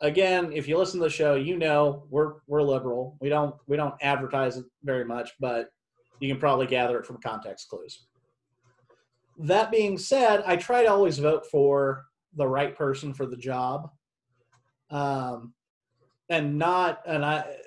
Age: 30-49